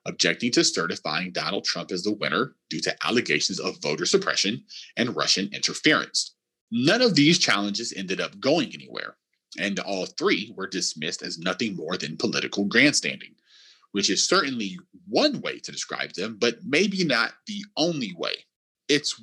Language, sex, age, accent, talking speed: English, male, 30-49, American, 160 wpm